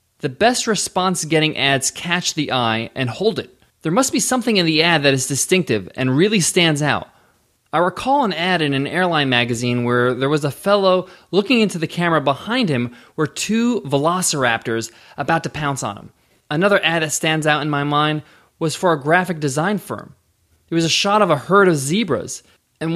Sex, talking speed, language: male, 200 wpm, English